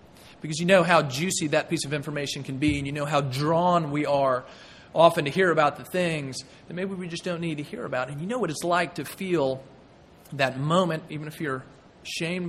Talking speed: 225 wpm